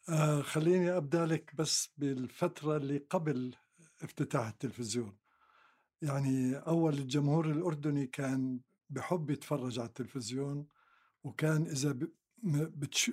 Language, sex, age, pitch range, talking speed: Arabic, male, 60-79, 140-160 Hz, 100 wpm